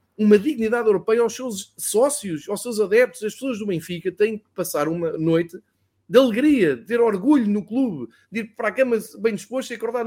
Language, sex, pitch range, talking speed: Portuguese, male, 175-255 Hz, 205 wpm